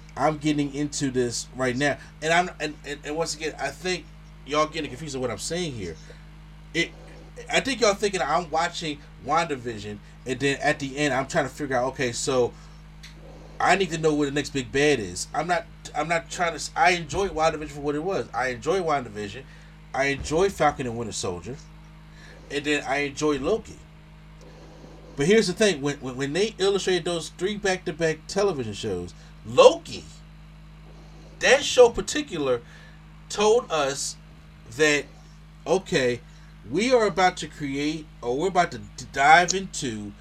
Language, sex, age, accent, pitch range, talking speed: English, male, 30-49, American, 145-170 Hz, 170 wpm